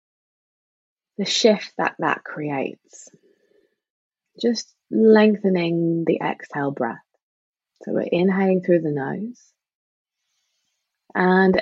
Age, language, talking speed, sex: 20-39, English, 90 wpm, female